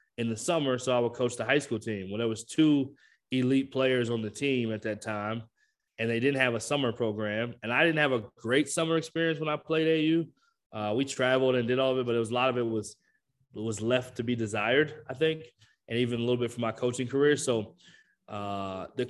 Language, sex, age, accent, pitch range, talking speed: English, male, 20-39, American, 110-130 Hz, 245 wpm